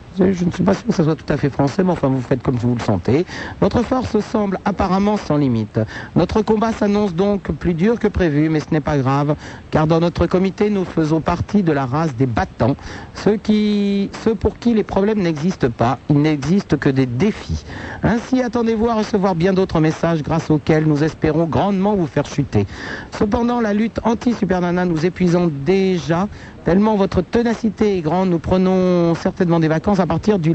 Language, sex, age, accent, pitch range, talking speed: French, male, 60-79, French, 145-200 Hz, 195 wpm